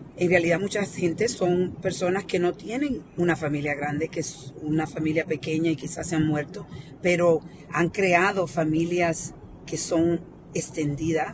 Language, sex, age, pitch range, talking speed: Spanish, female, 40-59, 155-190 Hz, 155 wpm